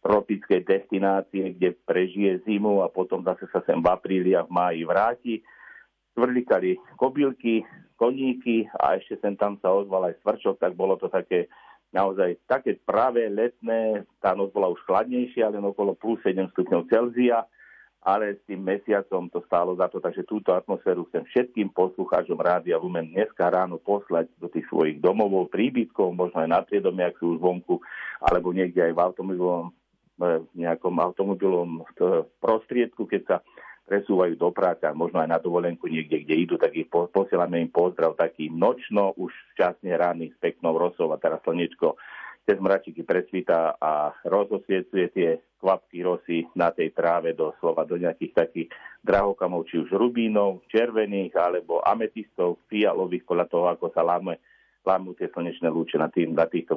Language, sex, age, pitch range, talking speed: Slovak, male, 50-69, 90-110 Hz, 165 wpm